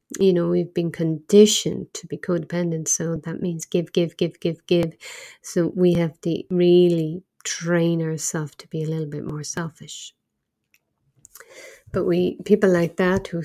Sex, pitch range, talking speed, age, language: female, 170-195 Hz, 160 wpm, 50-69, English